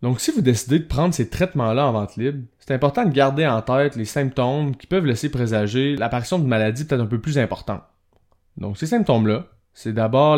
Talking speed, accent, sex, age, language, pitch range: 210 wpm, Canadian, male, 20-39, French, 110-145 Hz